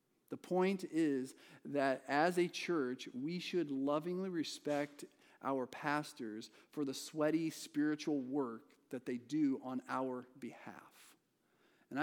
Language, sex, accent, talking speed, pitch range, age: English, male, American, 125 wpm, 130-160 Hz, 40-59